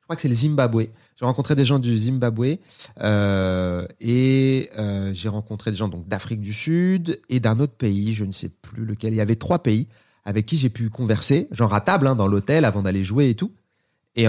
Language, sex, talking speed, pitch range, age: French, male, 225 wpm, 110-150 Hz, 30-49